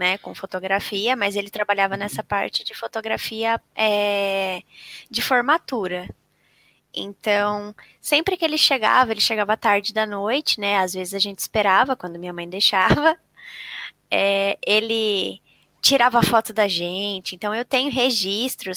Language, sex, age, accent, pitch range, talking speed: Portuguese, female, 10-29, Brazilian, 195-255 Hz, 130 wpm